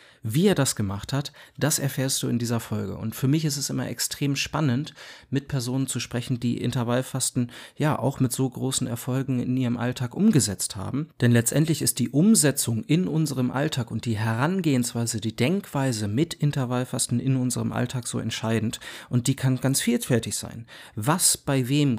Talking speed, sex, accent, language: 175 wpm, male, German, German